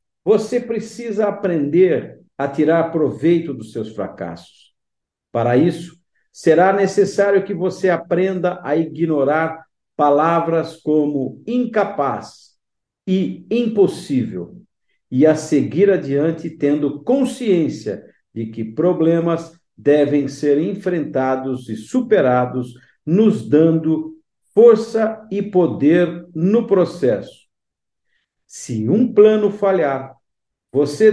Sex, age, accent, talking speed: male, 50-69, Brazilian, 95 wpm